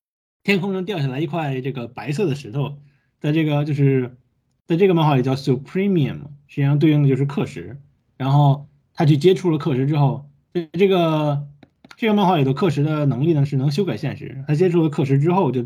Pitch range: 135-170 Hz